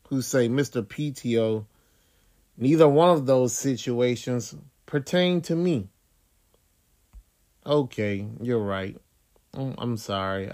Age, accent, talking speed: 30-49, American, 95 wpm